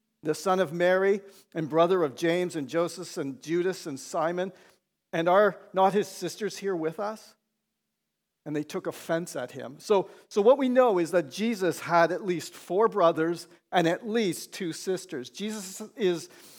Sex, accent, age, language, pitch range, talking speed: male, American, 50-69, English, 170-220 Hz, 175 wpm